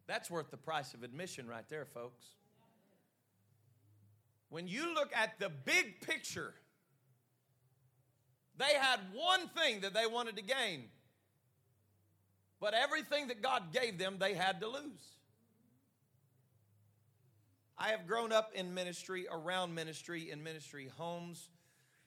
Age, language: 40-59, English